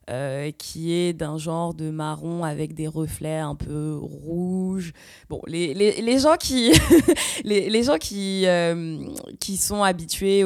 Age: 20-39